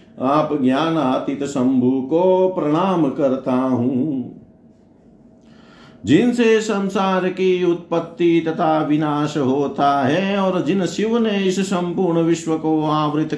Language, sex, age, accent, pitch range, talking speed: Hindi, male, 50-69, native, 150-190 Hz, 110 wpm